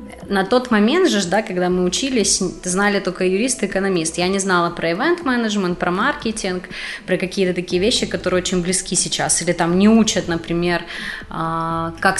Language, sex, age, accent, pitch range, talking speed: Ukrainian, female, 20-39, native, 175-200 Hz, 170 wpm